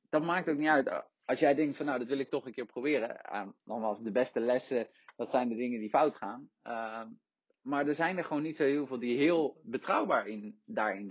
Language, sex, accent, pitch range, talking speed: English, male, Dutch, 110-145 Hz, 230 wpm